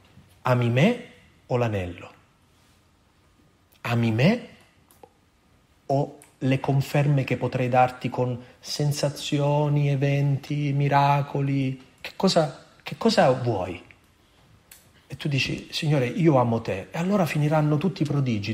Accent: native